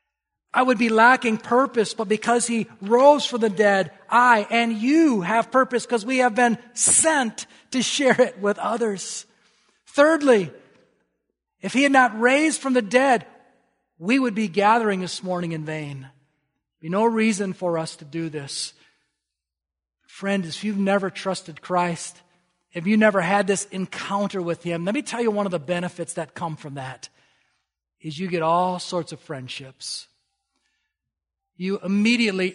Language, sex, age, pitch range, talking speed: English, male, 40-59, 170-240 Hz, 160 wpm